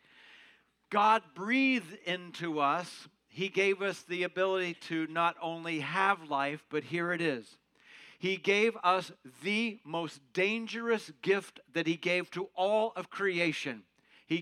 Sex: male